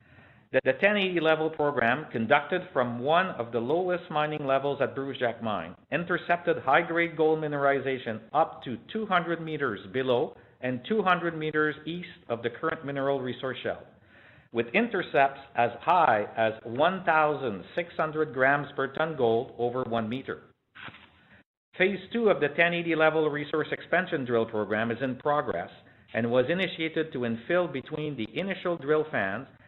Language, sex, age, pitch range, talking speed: English, male, 50-69, 120-160 Hz, 145 wpm